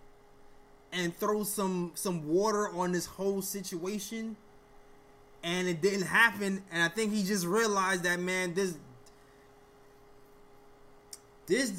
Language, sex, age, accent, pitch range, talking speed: English, male, 20-39, American, 150-225 Hz, 115 wpm